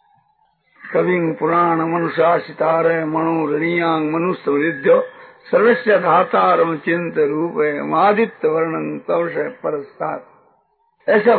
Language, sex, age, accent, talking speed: Hindi, male, 60-79, native, 65 wpm